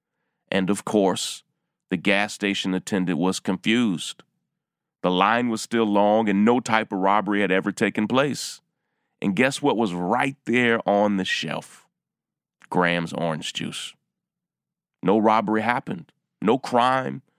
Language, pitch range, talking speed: English, 95-130 Hz, 140 wpm